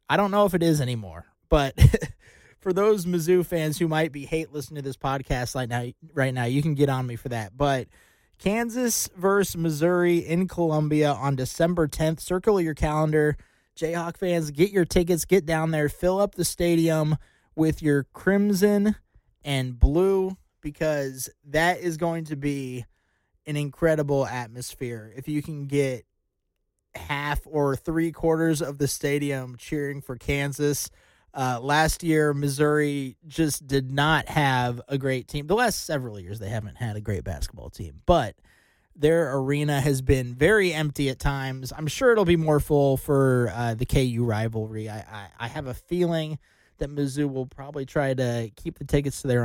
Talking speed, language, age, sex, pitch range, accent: 170 wpm, English, 20-39, male, 125-160 Hz, American